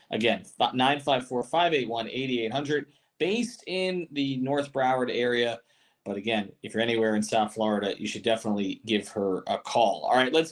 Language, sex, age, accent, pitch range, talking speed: English, male, 30-49, American, 120-155 Hz, 155 wpm